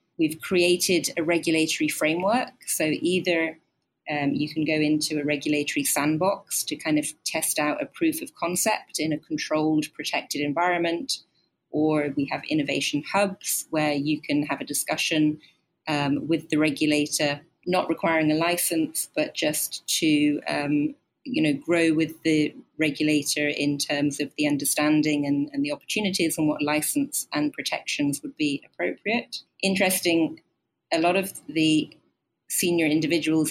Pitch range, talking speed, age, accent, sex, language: 150-180 Hz, 145 wpm, 30-49, British, female, English